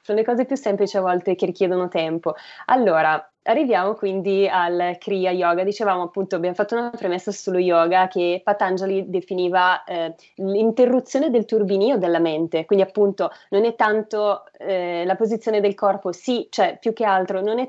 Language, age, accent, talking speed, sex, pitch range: Italian, 20-39, native, 170 wpm, female, 180-215 Hz